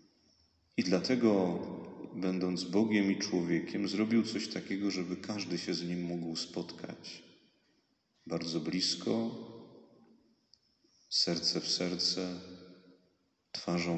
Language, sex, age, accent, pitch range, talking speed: Polish, male, 40-59, native, 85-115 Hz, 95 wpm